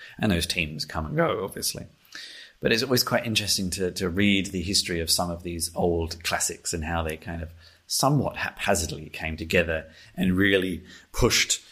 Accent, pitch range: British, 85-100 Hz